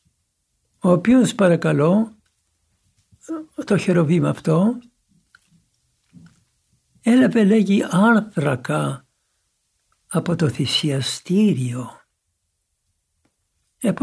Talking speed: 55 wpm